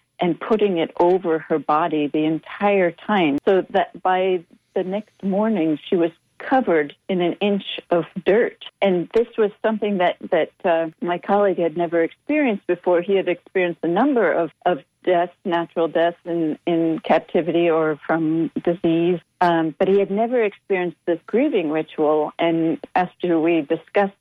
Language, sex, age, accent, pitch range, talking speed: English, female, 70-89, American, 165-200 Hz, 160 wpm